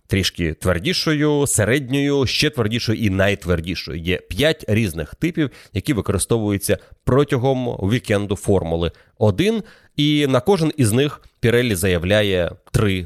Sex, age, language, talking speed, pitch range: male, 30-49, Ukrainian, 115 wpm, 95-130 Hz